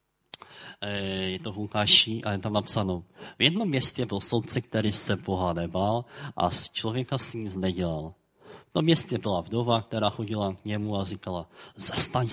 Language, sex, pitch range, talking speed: Czech, male, 100-130 Hz, 160 wpm